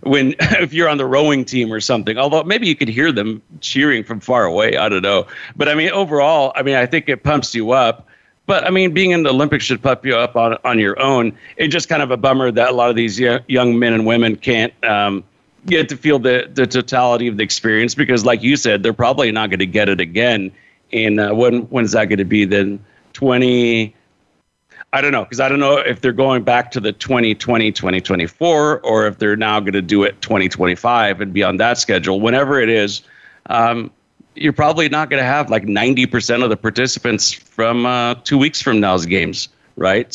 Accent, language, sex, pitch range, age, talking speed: American, English, male, 110-140 Hz, 50-69, 220 wpm